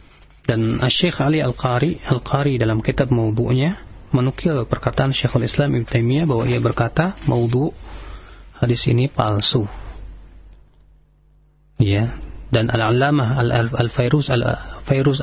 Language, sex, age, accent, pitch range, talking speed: Indonesian, male, 40-59, native, 105-150 Hz, 100 wpm